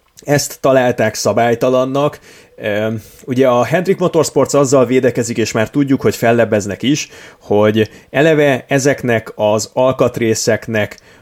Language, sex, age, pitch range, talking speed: Hungarian, male, 30-49, 105-130 Hz, 105 wpm